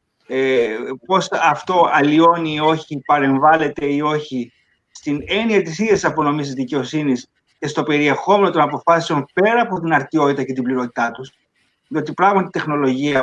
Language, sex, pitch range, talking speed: Greek, male, 140-190 Hz, 145 wpm